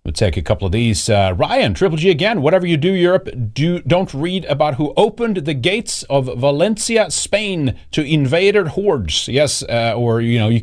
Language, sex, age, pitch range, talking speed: English, male, 40-59, 100-145 Hz, 200 wpm